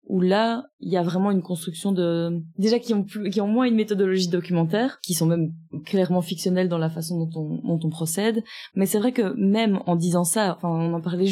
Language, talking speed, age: French, 235 wpm, 20-39